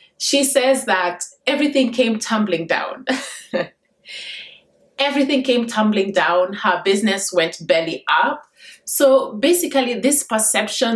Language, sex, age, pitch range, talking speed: English, female, 20-39, 185-245 Hz, 110 wpm